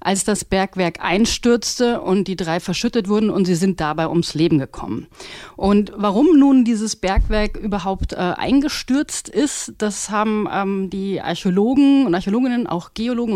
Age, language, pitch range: 30-49, German, 185-235 Hz